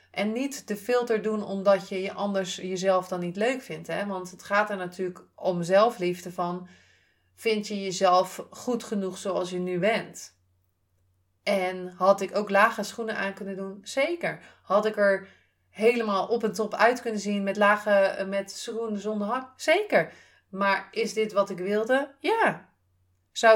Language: Dutch